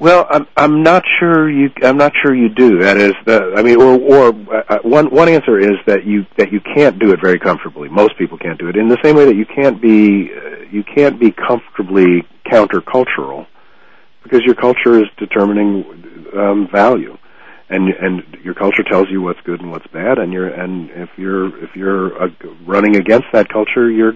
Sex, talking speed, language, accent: male, 205 wpm, English, American